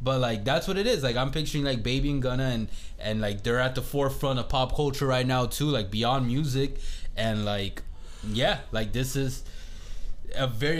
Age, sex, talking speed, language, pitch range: 20-39, male, 205 wpm, English, 100-130 Hz